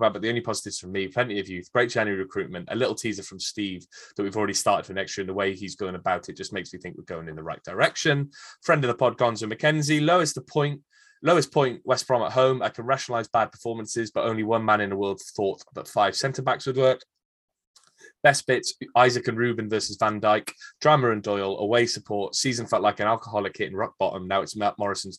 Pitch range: 100-135 Hz